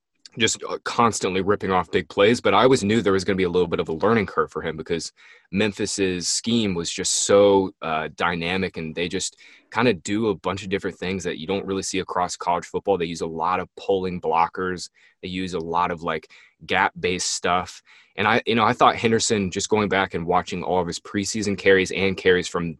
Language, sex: English, male